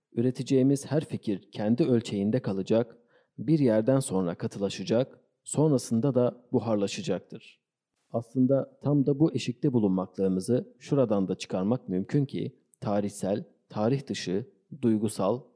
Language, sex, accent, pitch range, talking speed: Turkish, male, native, 105-135 Hz, 110 wpm